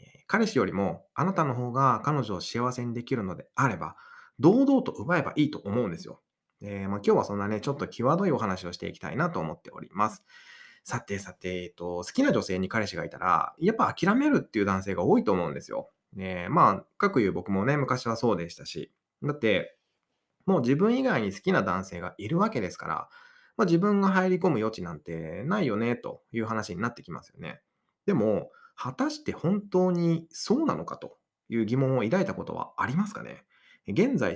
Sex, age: male, 20-39